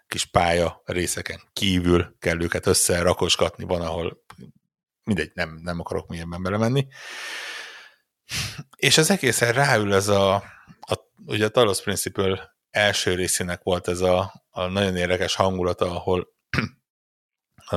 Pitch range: 85-95 Hz